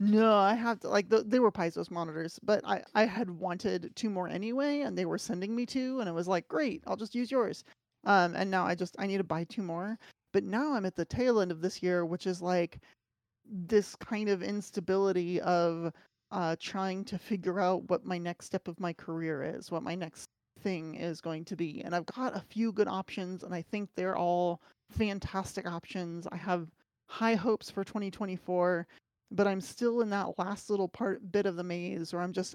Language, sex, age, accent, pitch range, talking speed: English, male, 30-49, American, 175-205 Hz, 220 wpm